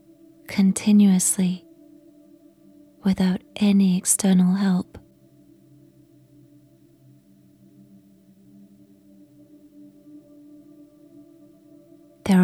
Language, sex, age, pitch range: English, female, 20-39, 150-245 Hz